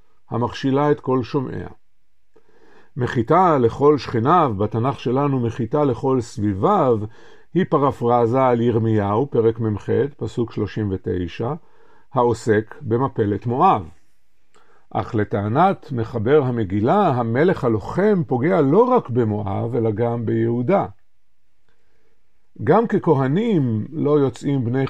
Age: 50-69